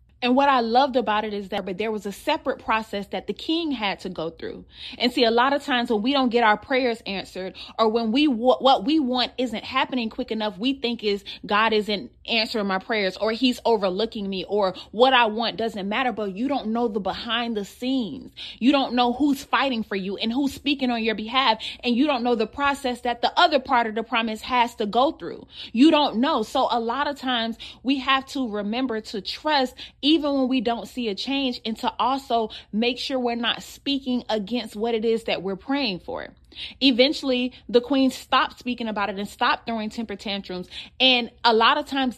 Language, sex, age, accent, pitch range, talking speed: English, female, 20-39, American, 215-265 Hz, 220 wpm